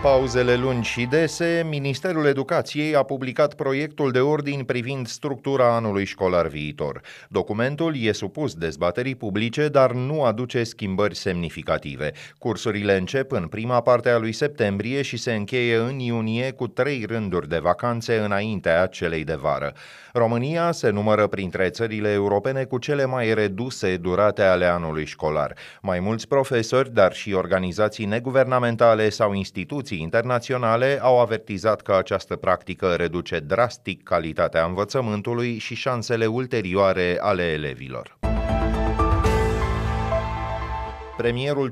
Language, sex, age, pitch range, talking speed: Romanian, male, 30-49, 95-130 Hz, 125 wpm